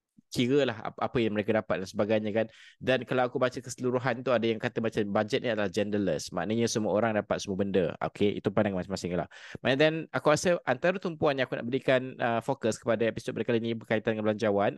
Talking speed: 220 wpm